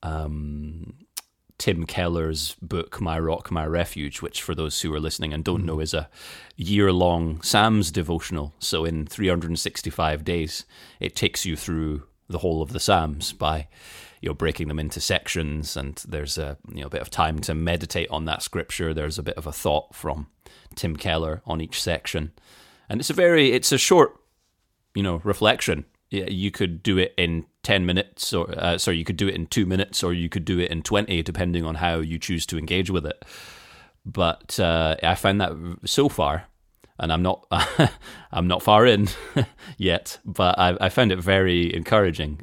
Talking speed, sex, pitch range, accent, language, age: 190 wpm, male, 80-95 Hz, British, English, 30-49